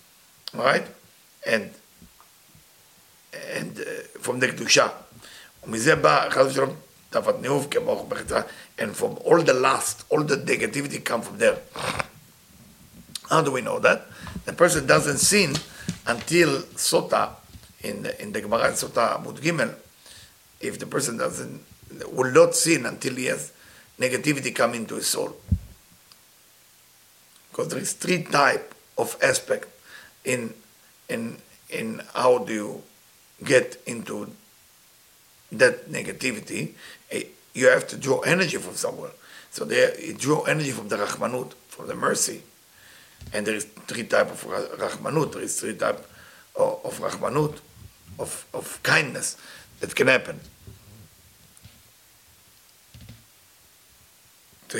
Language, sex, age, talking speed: English, male, 50-69, 115 wpm